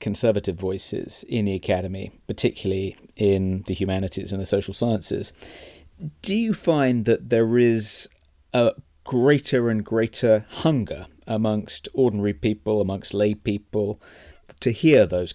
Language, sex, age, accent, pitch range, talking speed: English, male, 30-49, British, 95-115 Hz, 130 wpm